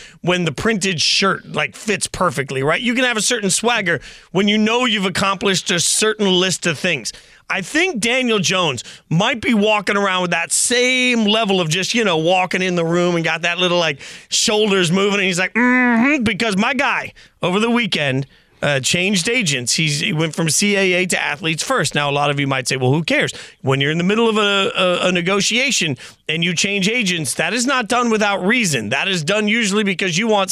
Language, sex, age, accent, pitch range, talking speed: English, male, 30-49, American, 165-215 Hz, 210 wpm